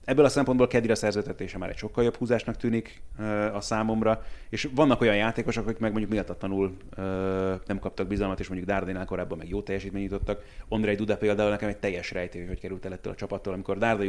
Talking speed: 210 wpm